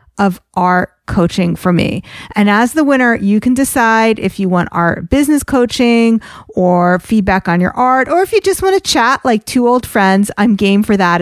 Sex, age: female, 40-59